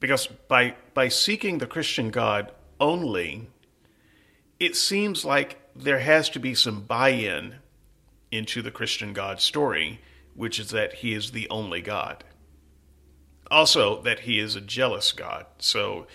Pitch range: 105-140 Hz